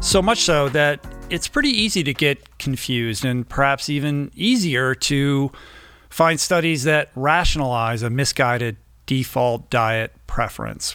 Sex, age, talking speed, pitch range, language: male, 40-59, 130 wpm, 115-140 Hz, English